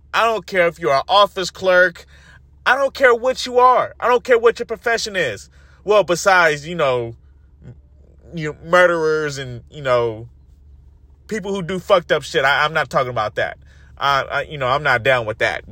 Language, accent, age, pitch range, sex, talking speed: English, American, 30-49, 115-175 Hz, male, 195 wpm